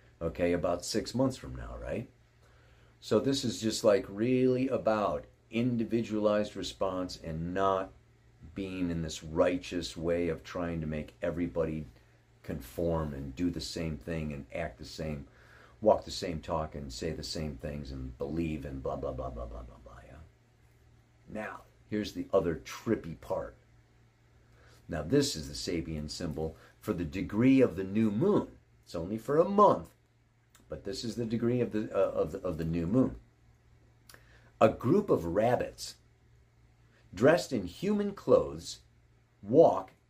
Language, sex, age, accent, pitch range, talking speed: English, male, 40-59, American, 80-125 Hz, 155 wpm